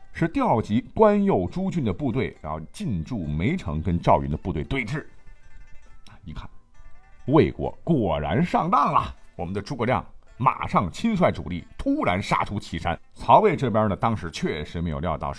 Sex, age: male, 50-69